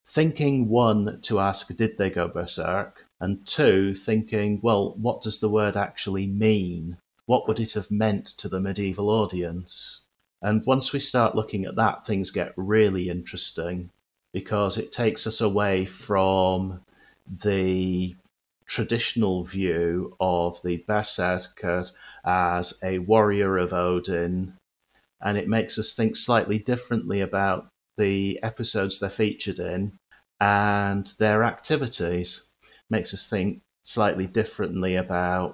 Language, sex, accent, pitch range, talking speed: English, male, British, 95-110 Hz, 130 wpm